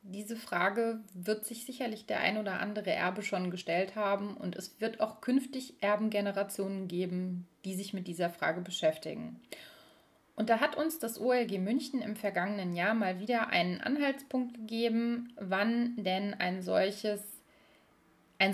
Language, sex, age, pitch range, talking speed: German, female, 30-49, 190-235 Hz, 145 wpm